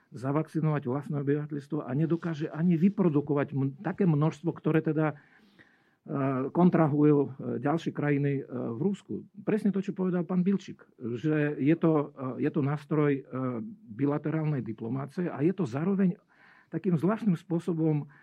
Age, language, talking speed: 50-69, Slovak, 120 wpm